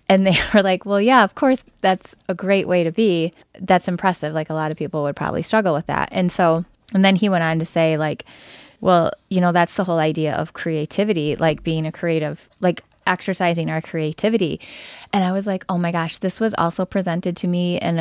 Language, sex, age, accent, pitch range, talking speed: English, female, 20-39, American, 165-195 Hz, 225 wpm